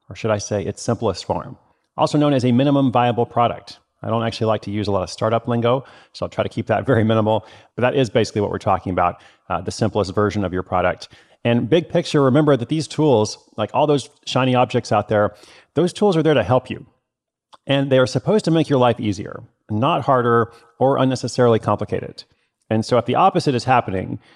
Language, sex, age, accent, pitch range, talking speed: English, male, 30-49, American, 100-130 Hz, 220 wpm